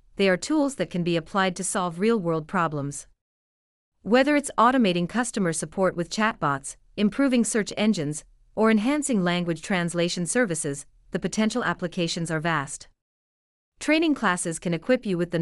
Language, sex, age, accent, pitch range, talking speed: English, female, 40-59, American, 165-210 Hz, 150 wpm